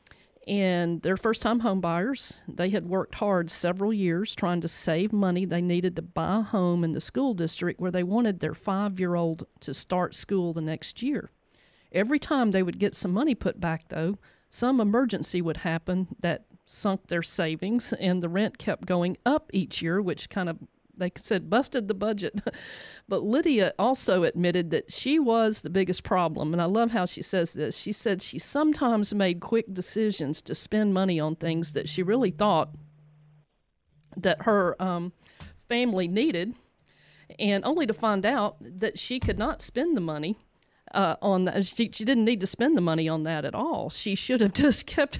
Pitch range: 170-215 Hz